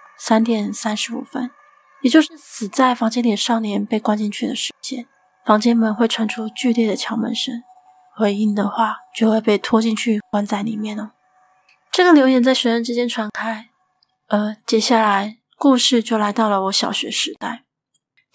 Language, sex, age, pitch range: Chinese, female, 20-39, 220-260 Hz